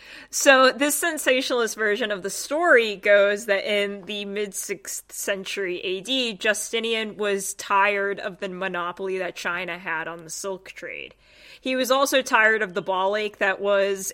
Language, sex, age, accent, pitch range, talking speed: English, female, 20-39, American, 190-225 Hz, 155 wpm